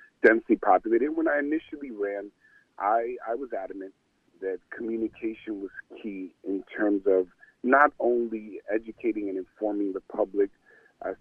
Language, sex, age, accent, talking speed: English, male, 40-59, American, 135 wpm